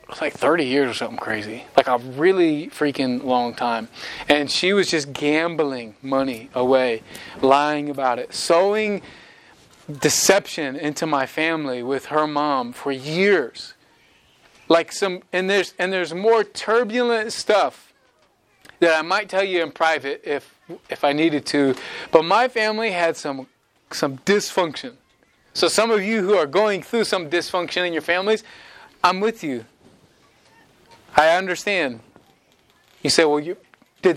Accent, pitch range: American, 145-195 Hz